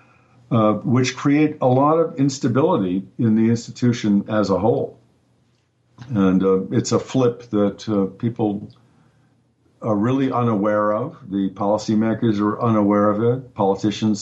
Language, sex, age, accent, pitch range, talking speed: English, male, 50-69, American, 105-125 Hz, 135 wpm